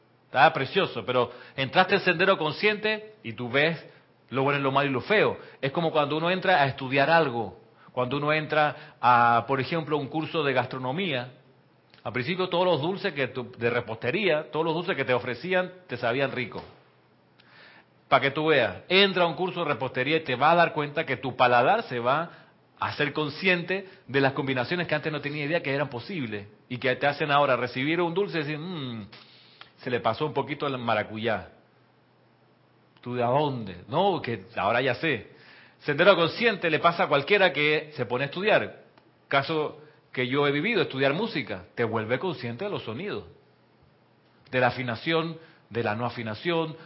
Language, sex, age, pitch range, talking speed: Spanish, male, 40-59, 125-160 Hz, 190 wpm